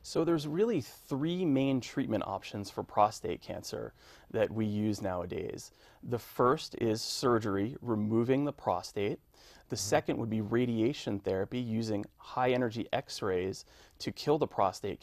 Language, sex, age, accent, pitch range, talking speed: English, male, 30-49, American, 105-125 Hz, 140 wpm